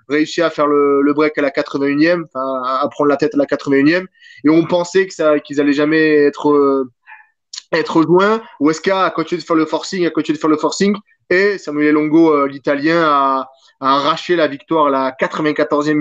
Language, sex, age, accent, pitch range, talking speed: French, male, 20-39, French, 145-170 Hz, 195 wpm